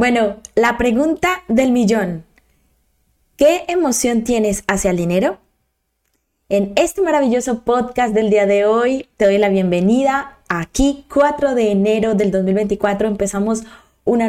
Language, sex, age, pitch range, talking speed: Spanish, female, 20-39, 200-245 Hz, 130 wpm